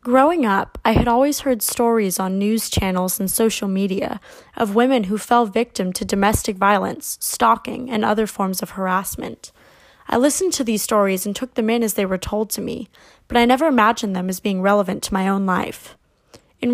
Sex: female